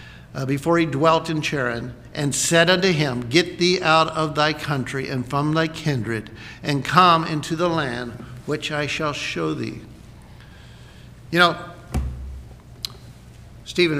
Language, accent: English, American